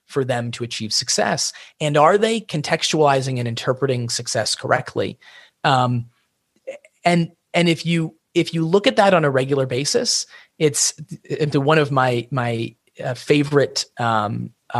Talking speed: 140 wpm